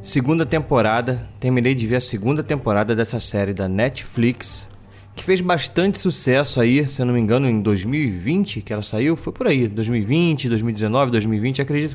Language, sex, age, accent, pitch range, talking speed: Portuguese, male, 20-39, Brazilian, 115-155 Hz, 170 wpm